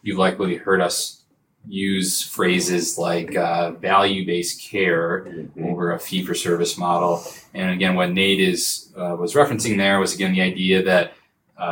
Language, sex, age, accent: English, male, 20-39, American